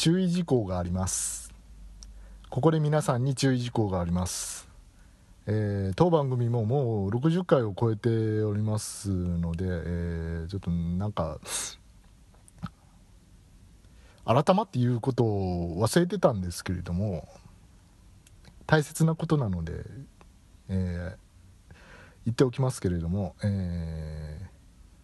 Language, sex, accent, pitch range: Japanese, male, native, 90-140 Hz